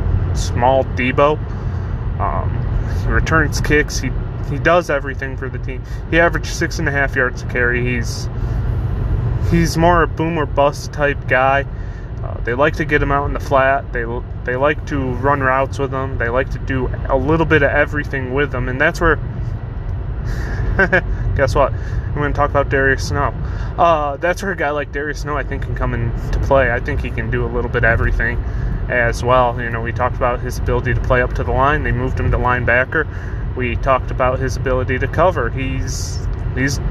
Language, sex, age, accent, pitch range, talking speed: English, male, 20-39, American, 115-135 Hz, 205 wpm